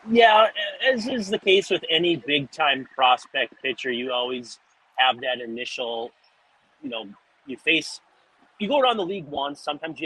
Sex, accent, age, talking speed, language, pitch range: male, American, 30-49, 165 wpm, English, 115-150 Hz